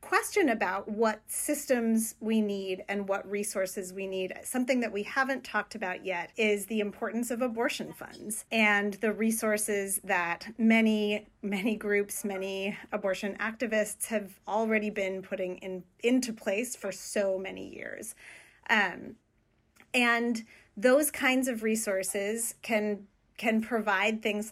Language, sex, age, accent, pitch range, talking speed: English, female, 30-49, American, 200-240 Hz, 135 wpm